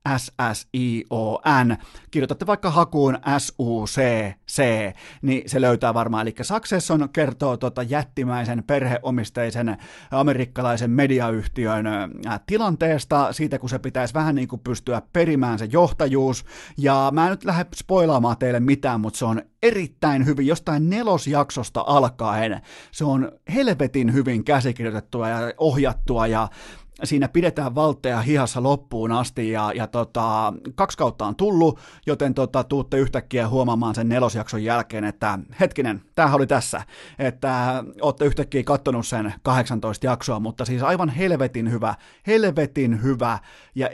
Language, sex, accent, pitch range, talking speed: Finnish, male, native, 115-150 Hz, 130 wpm